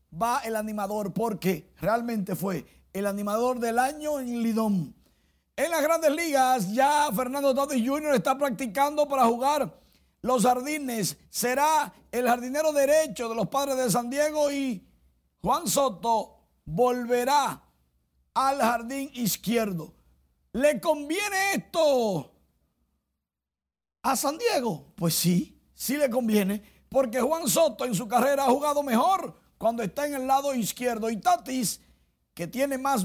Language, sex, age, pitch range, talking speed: Spanish, male, 50-69, 205-285 Hz, 135 wpm